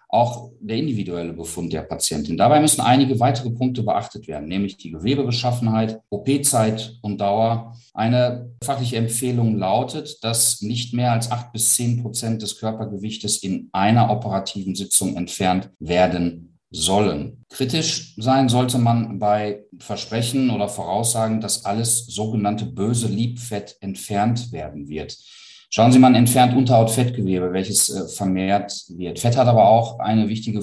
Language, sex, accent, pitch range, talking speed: German, male, German, 105-120 Hz, 135 wpm